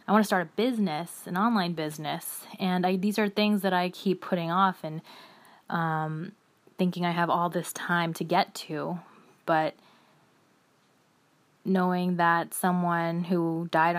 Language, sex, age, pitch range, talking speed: English, female, 20-39, 170-190 Hz, 150 wpm